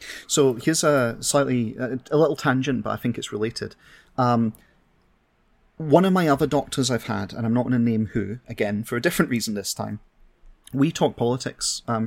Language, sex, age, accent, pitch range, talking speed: English, male, 30-49, British, 110-125 Hz, 190 wpm